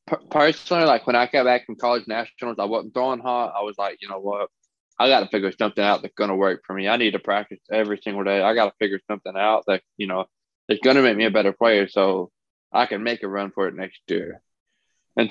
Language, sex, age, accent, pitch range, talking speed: English, male, 20-39, American, 100-120 Hz, 260 wpm